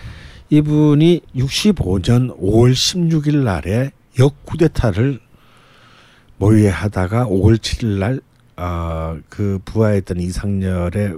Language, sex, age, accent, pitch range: Korean, male, 60-79, native, 100-135 Hz